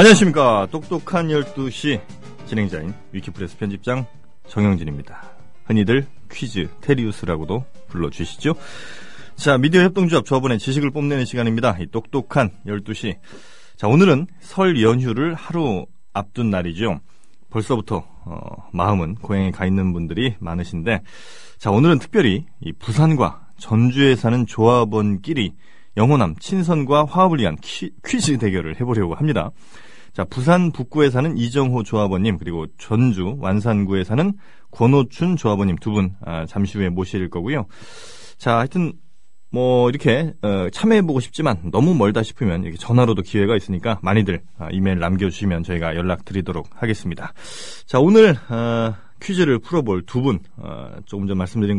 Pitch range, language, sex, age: 100-145 Hz, Korean, male, 30-49